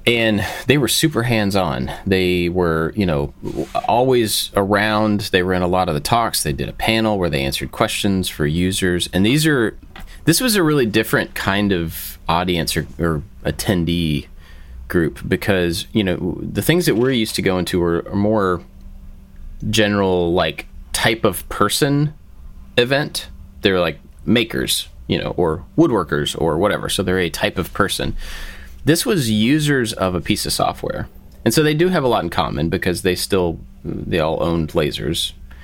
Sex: male